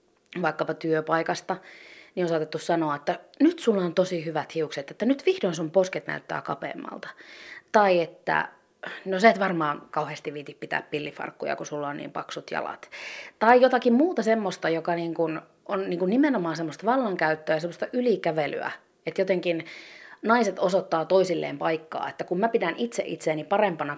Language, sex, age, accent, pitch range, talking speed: Finnish, female, 30-49, native, 155-205 Hz, 155 wpm